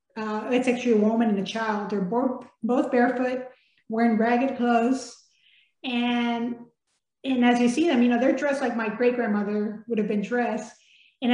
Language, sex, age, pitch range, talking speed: English, female, 30-49, 225-255 Hz, 180 wpm